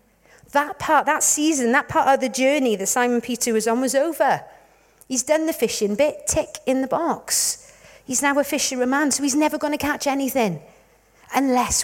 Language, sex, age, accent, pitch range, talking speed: English, female, 50-69, British, 235-340 Hz, 180 wpm